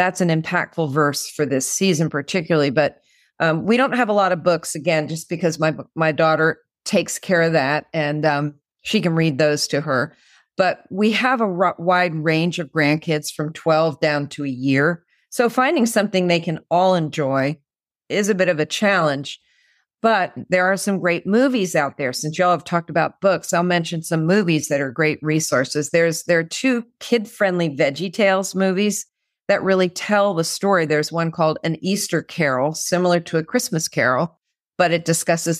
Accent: American